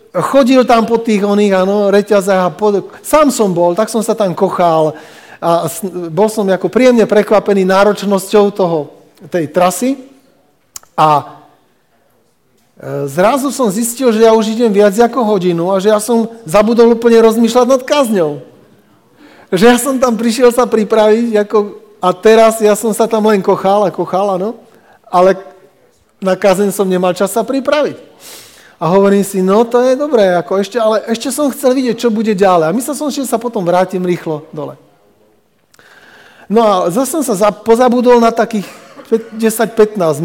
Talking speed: 165 wpm